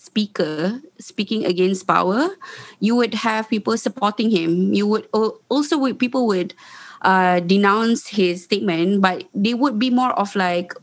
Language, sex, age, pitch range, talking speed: English, female, 20-39, 190-240 Hz, 150 wpm